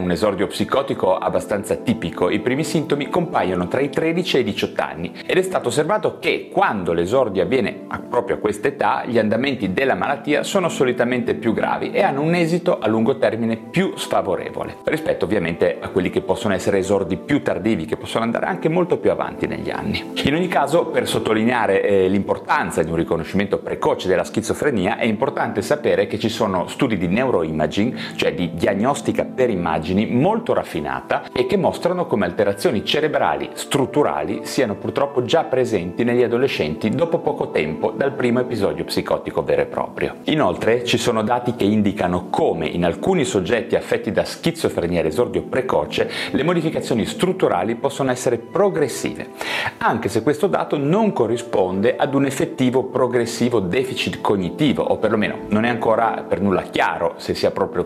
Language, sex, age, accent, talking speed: Italian, male, 30-49, native, 170 wpm